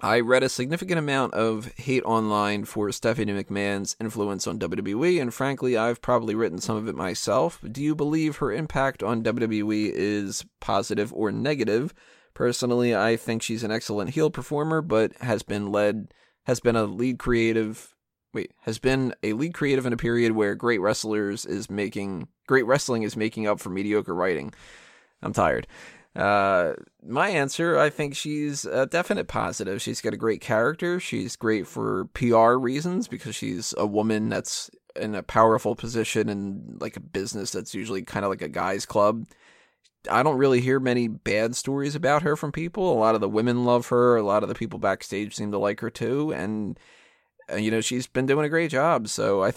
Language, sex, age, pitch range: English, male, 30-49, 110-135 Hz